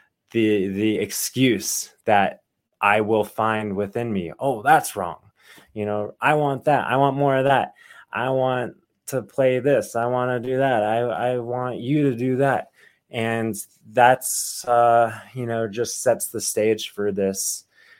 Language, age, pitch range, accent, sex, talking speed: English, 20-39, 100-125 Hz, American, male, 165 wpm